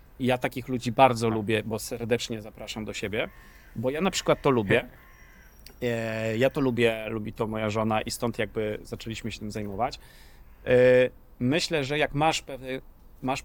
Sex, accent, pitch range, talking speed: male, native, 115-130 Hz, 155 wpm